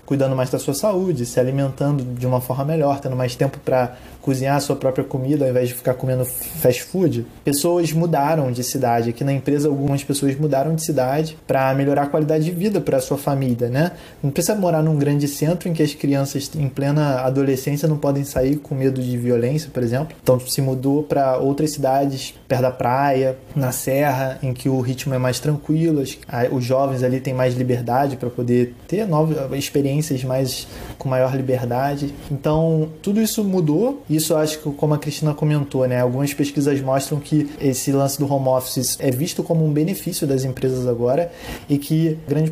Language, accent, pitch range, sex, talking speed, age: Portuguese, Brazilian, 130-155 Hz, male, 195 wpm, 20-39